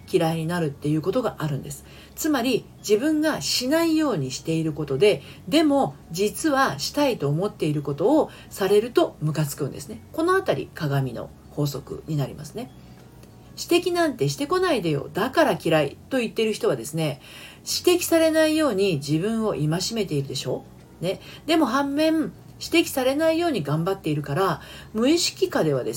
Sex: female